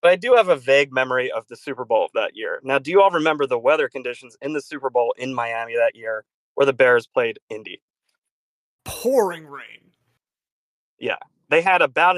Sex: male